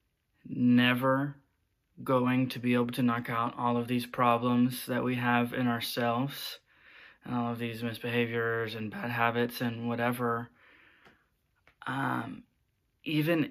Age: 20-39